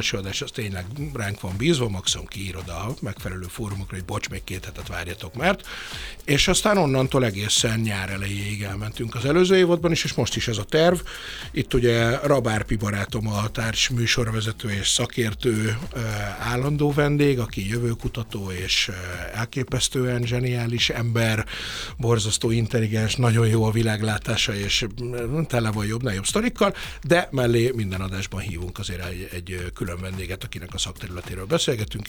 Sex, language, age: male, Hungarian, 60-79